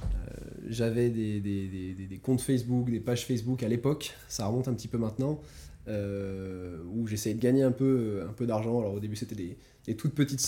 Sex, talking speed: male, 220 wpm